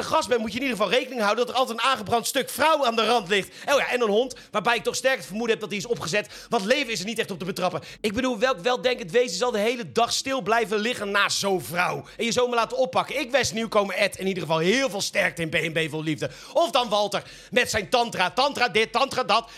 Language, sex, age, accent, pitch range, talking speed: Dutch, male, 40-59, Dutch, 210-265 Hz, 280 wpm